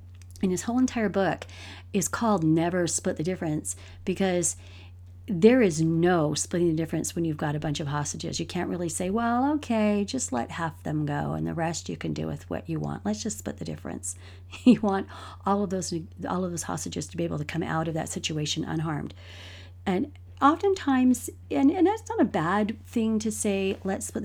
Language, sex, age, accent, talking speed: English, female, 40-59, American, 205 wpm